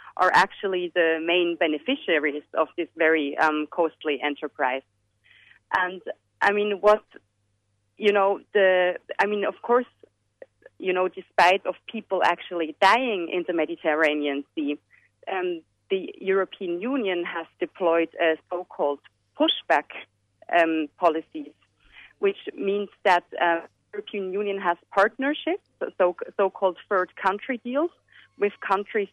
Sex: female